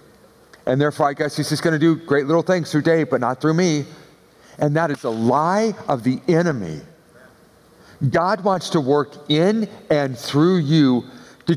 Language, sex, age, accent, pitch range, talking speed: English, male, 50-69, American, 160-235 Hz, 180 wpm